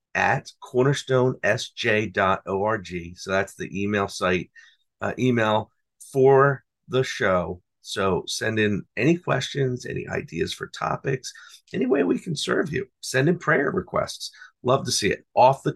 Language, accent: English, American